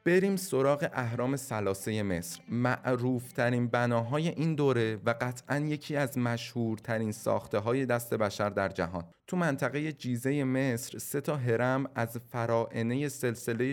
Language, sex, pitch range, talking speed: Persian, male, 115-140 Hz, 135 wpm